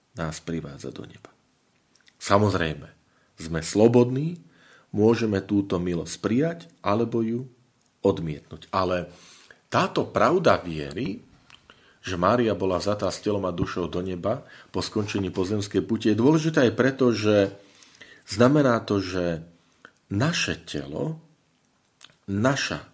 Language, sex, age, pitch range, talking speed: Slovak, male, 40-59, 90-125 Hz, 110 wpm